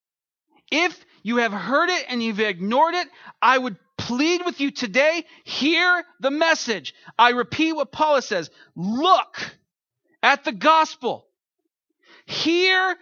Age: 40-59